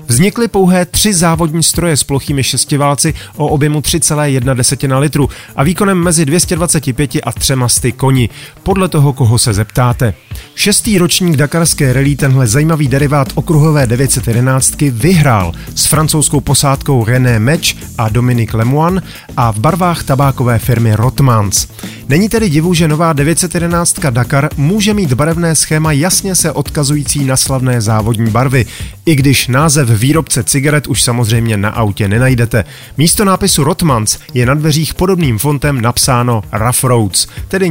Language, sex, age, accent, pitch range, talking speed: Czech, male, 30-49, native, 125-165 Hz, 140 wpm